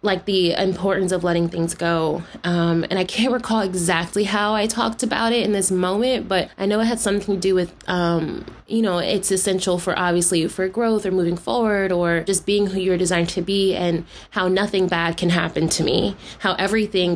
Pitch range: 175-195 Hz